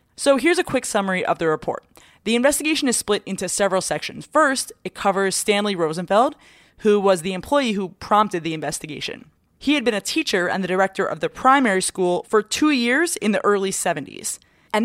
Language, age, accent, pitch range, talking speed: English, 20-39, American, 175-220 Hz, 195 wpm